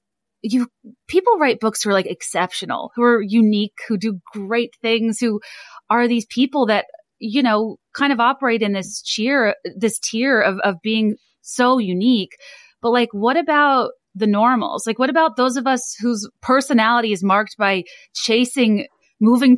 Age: 30-49